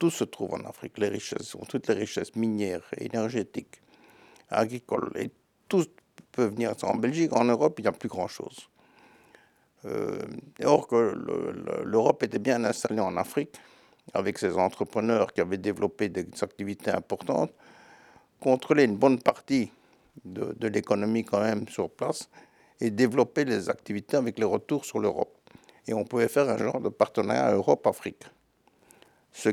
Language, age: French, 60-79